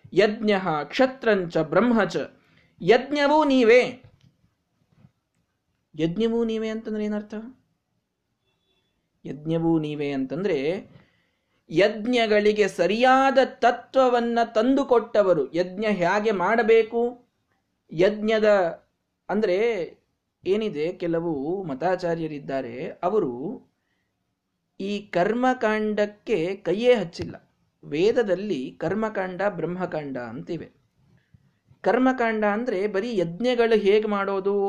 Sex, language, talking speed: male, Kannada, 70 wpm